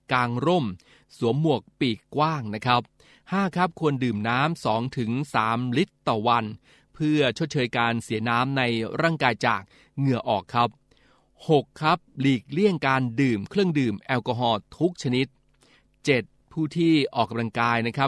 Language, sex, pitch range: Thai, male, 115-140 Hz